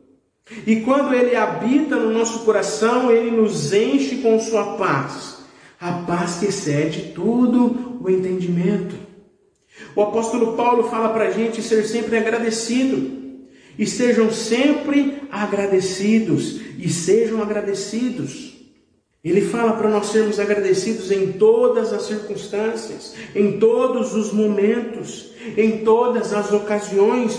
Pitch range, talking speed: 210-235 Hz, 120 wpm